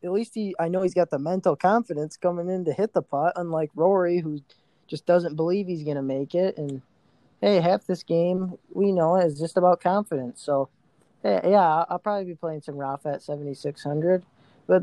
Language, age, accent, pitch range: English, 20-39, American, 135-170 Hz